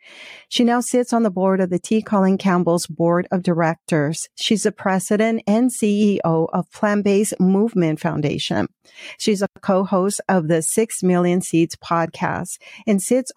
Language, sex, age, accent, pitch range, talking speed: English, female, 50-69, American, 165-205 Hz, 155 wpm